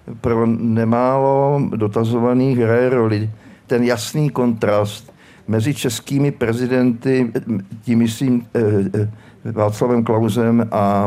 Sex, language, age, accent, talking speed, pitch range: male, Czech, 50-69, native, 85 wpm, 110-130 Hz